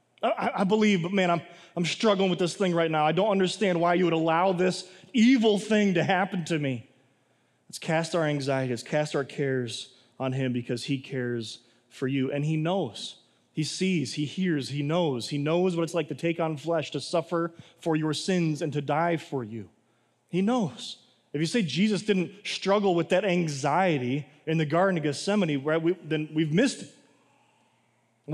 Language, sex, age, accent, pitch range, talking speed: English, male, 30-49, American, 145-195 Hz, 195 wpm